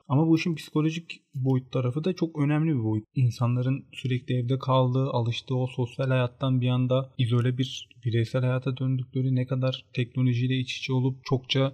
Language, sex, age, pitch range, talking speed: Turkish, male, 30-49, 120-145 Hz, 170 wpm